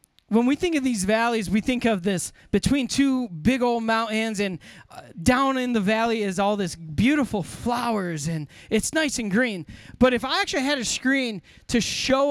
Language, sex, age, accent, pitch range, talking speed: English, male, 20-39, American, 165-245 Hz, 190 wpm